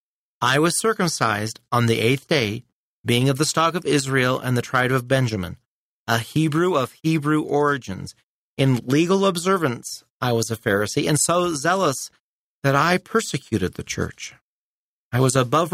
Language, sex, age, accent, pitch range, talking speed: English, male, 30-49, American, 115-150 Hz, 155 wpm